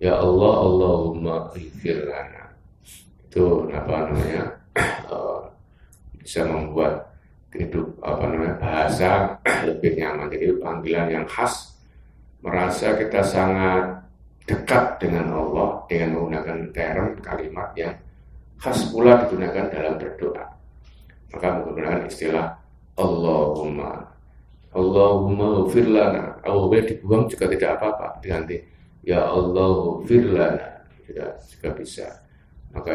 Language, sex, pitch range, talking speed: Indonesian, male, 80-100 Hz, 100 wpm